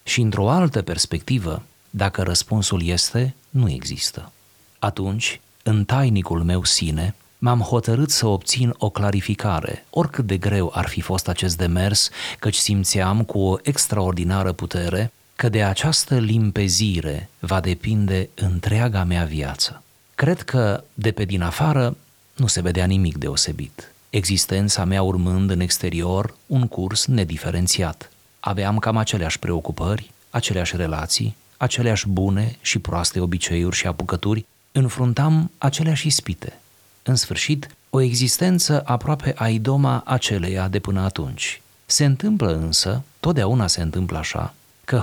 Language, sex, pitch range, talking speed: Romanian, male, 95-125 Hz, 130 wpm